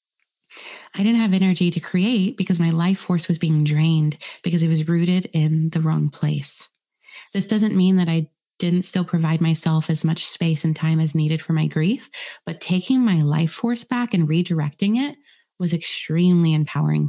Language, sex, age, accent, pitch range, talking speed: English, female, 20-39, American, 160-195 Hz, 185 wpm